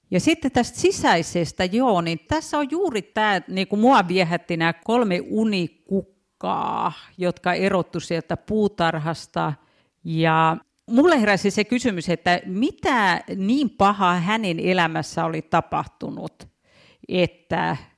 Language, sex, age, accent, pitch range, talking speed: Finnish, female, 50-69, native, 170-225 Hz, 115 wpm